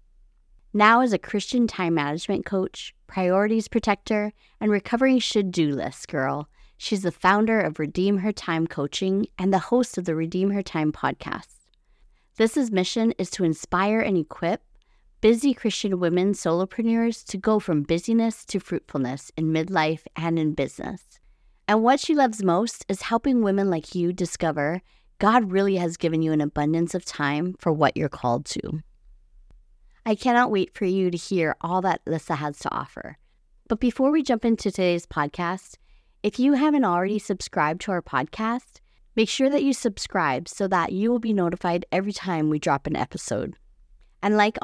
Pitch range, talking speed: 160-220 Hz, 170 wpm